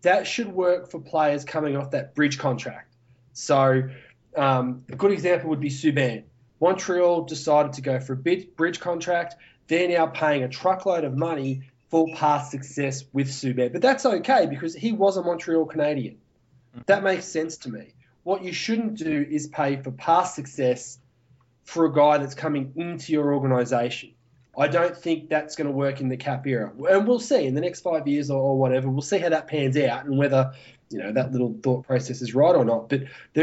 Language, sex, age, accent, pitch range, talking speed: English, male, 20-39, Australian, 130-165 Hz, 200 wpm